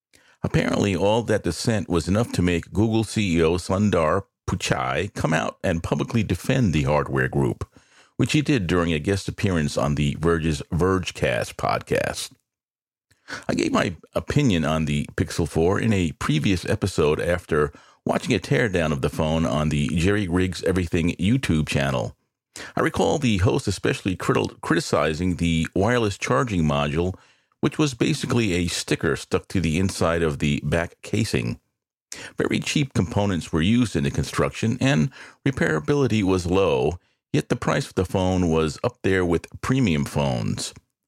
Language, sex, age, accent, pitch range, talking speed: English, male, 50-69, American, 80-110 Hz, 155 wpm